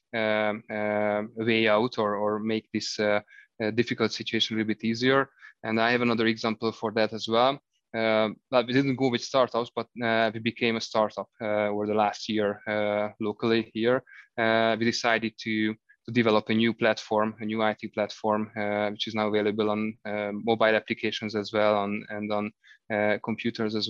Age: 20-39